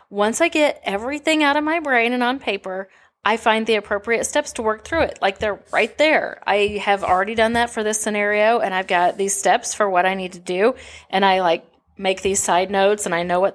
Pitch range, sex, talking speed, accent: 195-260 Hz, female, 240 wpm, American